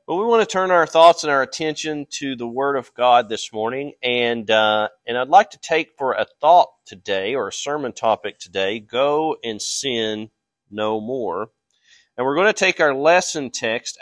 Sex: male